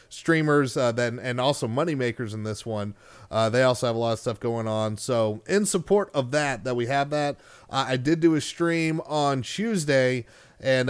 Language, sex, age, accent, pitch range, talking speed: English, male, 30-49, American, 125-160 Hz, 210 wpm